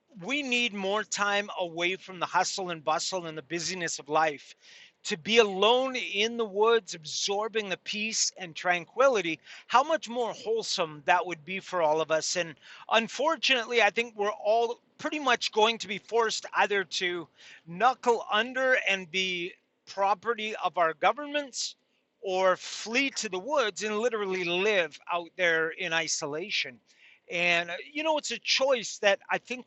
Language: English